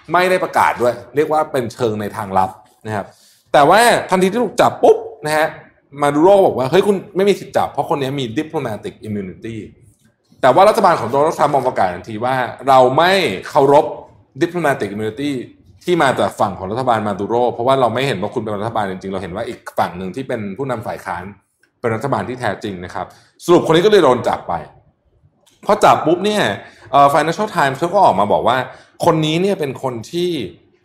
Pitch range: 110-155 Hz